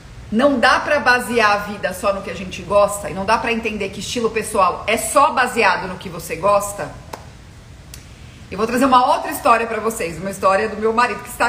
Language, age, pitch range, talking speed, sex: Portuguese, 40-59, 210-275 Hz, 220 wpm, female